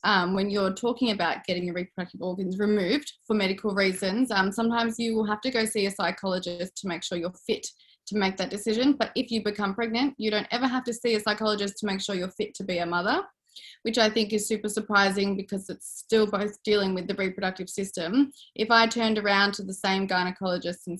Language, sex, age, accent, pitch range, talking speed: English, female, 20-39, Australian, 195-230 Hz, 225 wpm